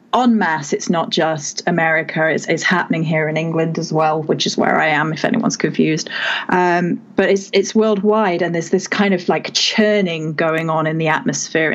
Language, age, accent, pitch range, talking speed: English, 30-49, British, 170-210 Hz, 200 wpm